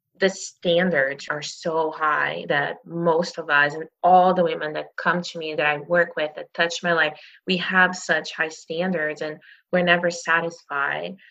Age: 20-39